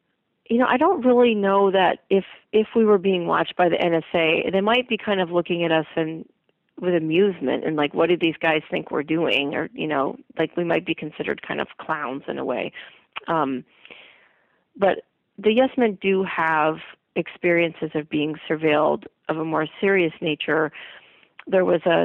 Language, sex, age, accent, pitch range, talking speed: English, female, 40-59, American, 155-185 Hz, 190 wpm